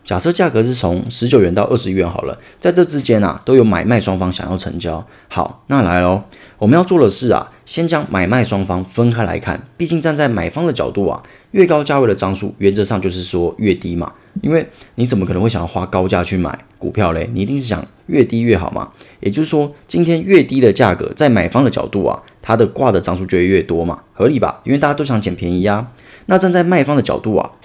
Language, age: Chinese, 30-49